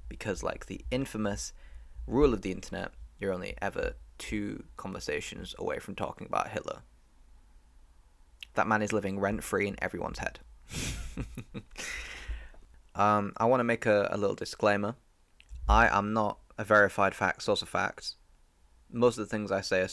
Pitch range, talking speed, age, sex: 65-105 Hz, 155 wpm, 10-29, male